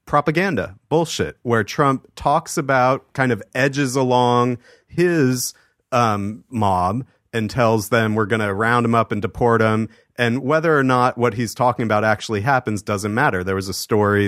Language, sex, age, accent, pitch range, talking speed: English, male, 30-49, American, 115-150 Hz, 170 wpm